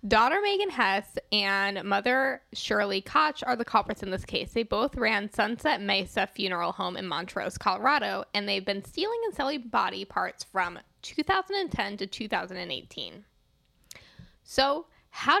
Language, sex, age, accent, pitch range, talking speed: English, female, 10-29, American, 185-245 Hz, 145 wpm